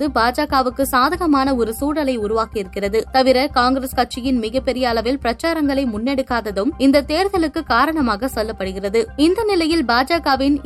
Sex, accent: female, native